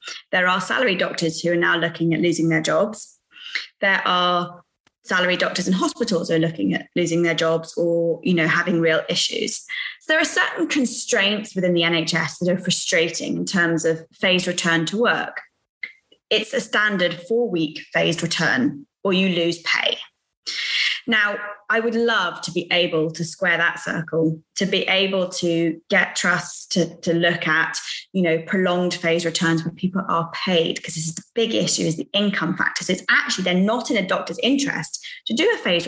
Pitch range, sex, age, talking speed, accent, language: 170-225 Hz, female, 20-39, 190 wpm, British, English